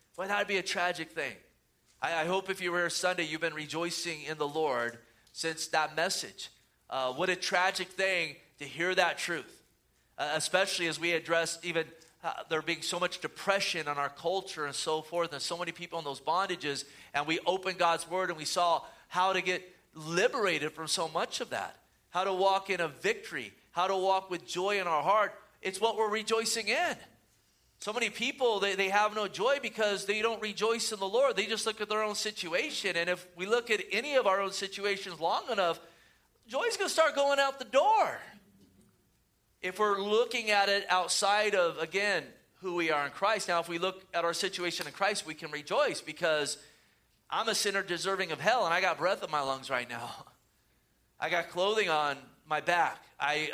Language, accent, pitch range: English, American, 160-200 Hz